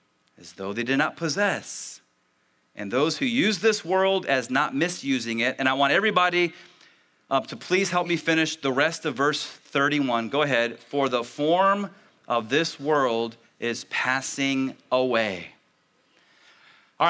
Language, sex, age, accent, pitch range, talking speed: English, male, 30-49, American, 145-225 Hz, 150 wpm